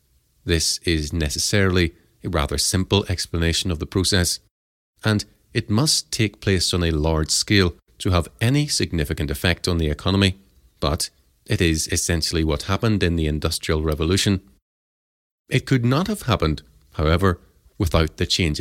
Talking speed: 150 wpm